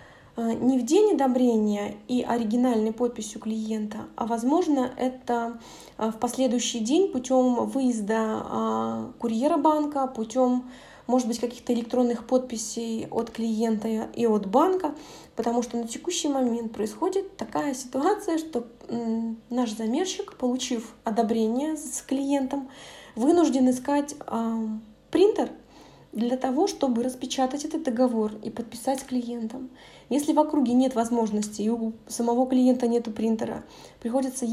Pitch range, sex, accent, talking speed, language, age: 230-275 Hz, female, native, 120 wpm, Russian, 20-39